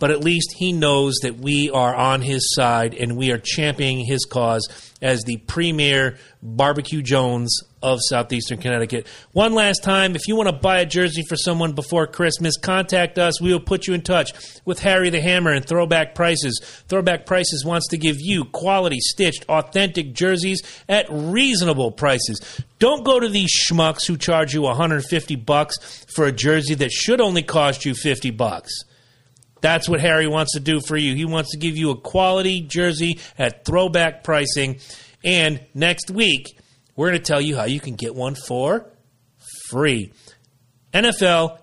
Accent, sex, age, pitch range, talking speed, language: American, male, 40-59, 130-175 Hz, 175 wpm, English